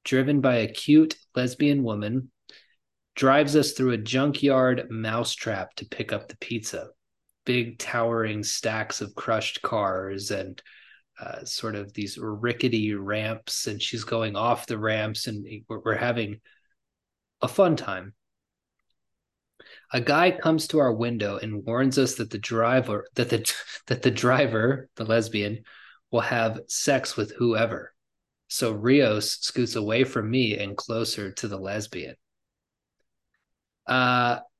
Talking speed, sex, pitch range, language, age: 135 wpm, male, 110-135 Hz, English, 20-39